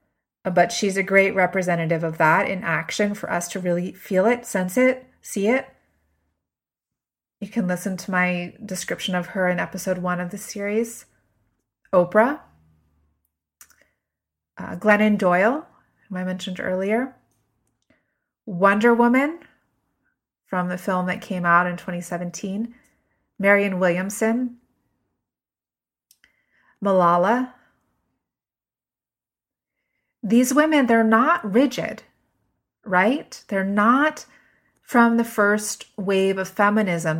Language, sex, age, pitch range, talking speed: English, female, 30-49, 185-230 Hz, 110 wpm